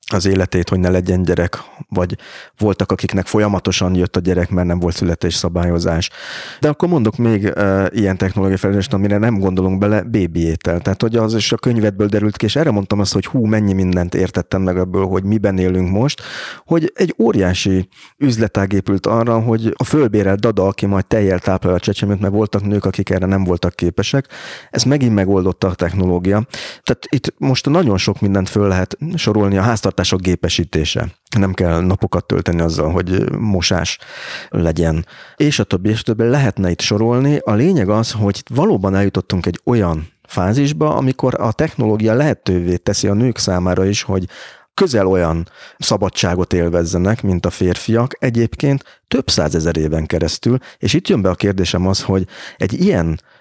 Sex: male